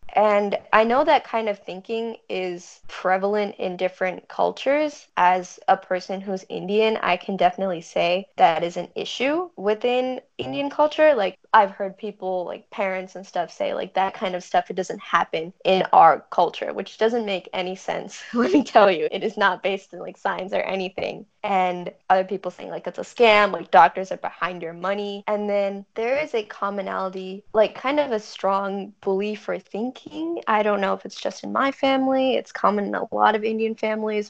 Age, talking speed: 10-29, 195 wpm